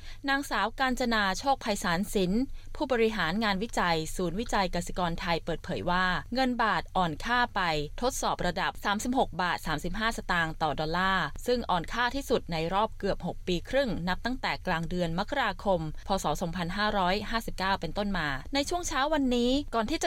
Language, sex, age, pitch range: Thai, female, 20-39, 175-230 Hz